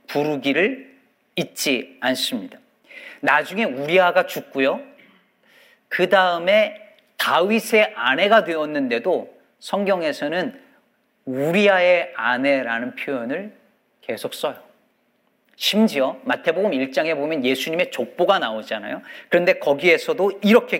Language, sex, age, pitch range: Korean, male, 40-59, 165-235 Hz